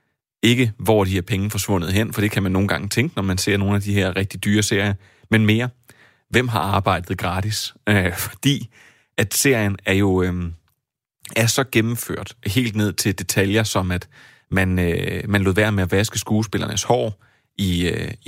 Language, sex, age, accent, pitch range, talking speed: Danish, male, 30-49, native, 95-115 Hz, 190 wpm